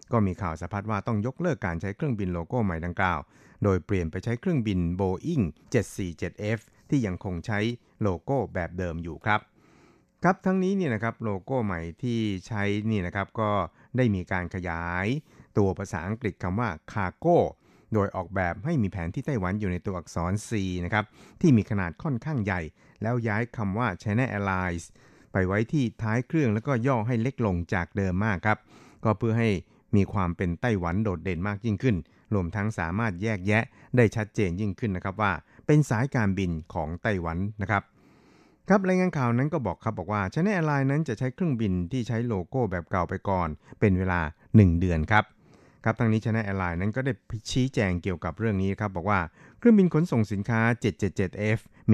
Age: 60-79